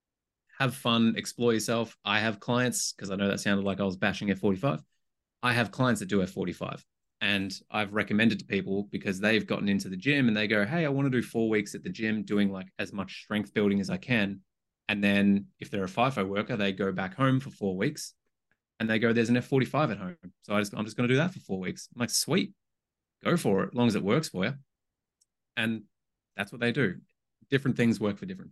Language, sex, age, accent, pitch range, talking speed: English, male, 20-39, Australian, 95-125 Hz, 240 wpm